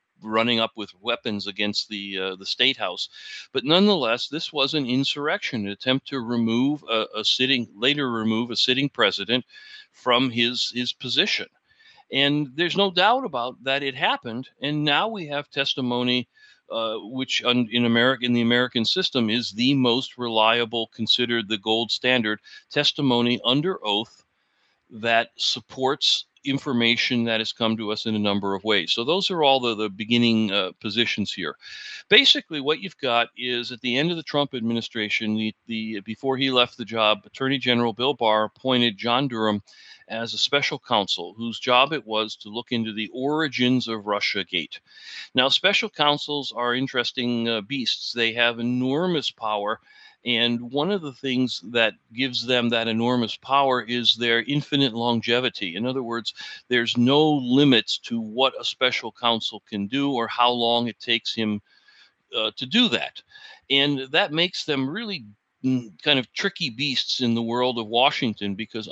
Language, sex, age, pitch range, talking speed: English, male, 40-59, 115-140 Hz, 165 wpm